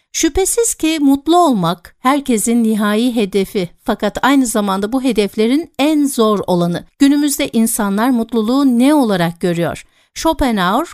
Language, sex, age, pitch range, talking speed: Turkish, female, 60-79, 200-275 Hz, 120 wpm